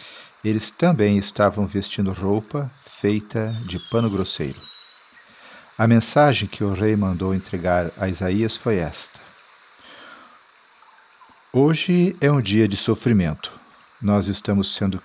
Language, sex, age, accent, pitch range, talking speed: Portuguese, male, 50-69, Brazilian, 100-120 Hz, 115 wpm